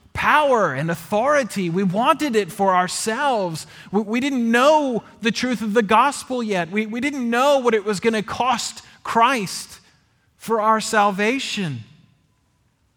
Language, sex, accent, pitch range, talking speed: English, male, American, 130-215 Hz, 150 wpm